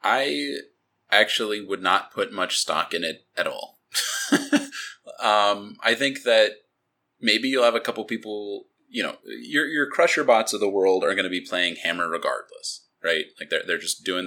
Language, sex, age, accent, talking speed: English, male, 20-39, American, 180 wpm